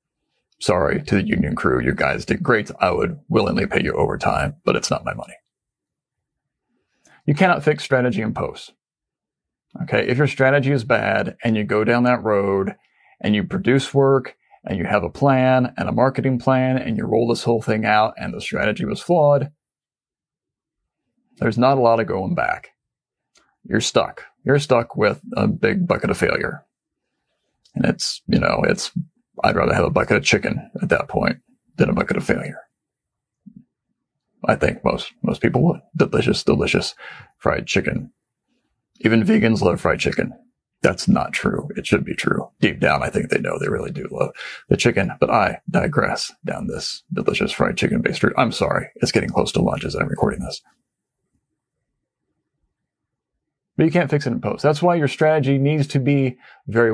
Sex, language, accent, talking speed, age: male, English, American, 180 wpm, 40-59